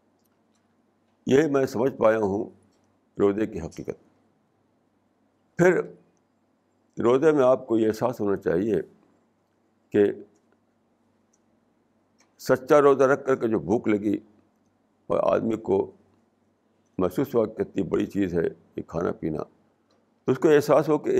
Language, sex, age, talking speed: Urdu, male, 60-79, 125 wpm